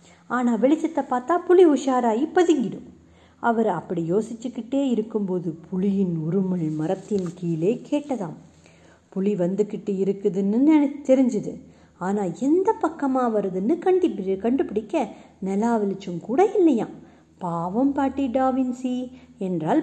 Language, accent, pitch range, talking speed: Tamil, native, 195-260 Hz, 95 wpm